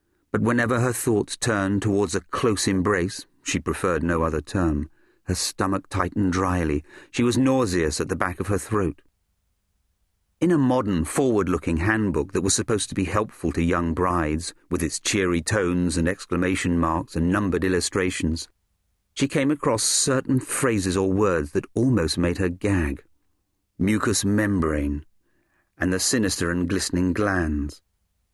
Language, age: English, 40-59